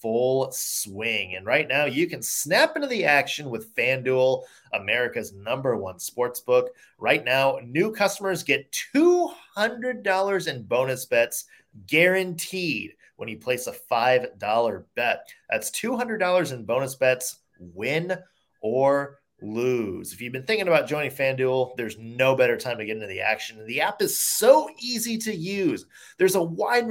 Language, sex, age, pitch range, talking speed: English, male, 30-49, 130-205 Hz, 150 wpm